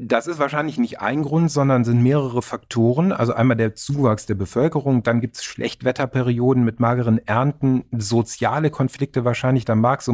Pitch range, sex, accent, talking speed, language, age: 110-140 Hz, male, German, 170 wpm, German, 40-59